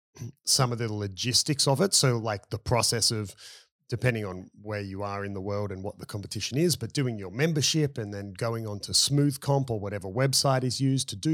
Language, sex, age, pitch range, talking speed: English, male, 30-49, 110-140 Hz, 220 wpm